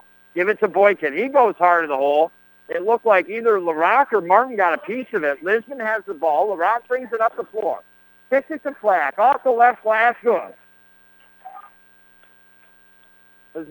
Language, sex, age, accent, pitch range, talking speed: English, male, 60-79, American, 145-220 Hz, 180 wpm